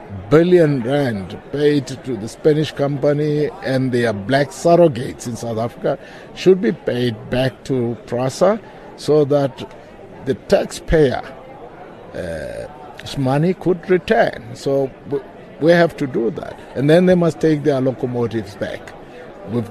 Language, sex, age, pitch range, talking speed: English, male, 60-79, 120-155 Hz, 130 wpm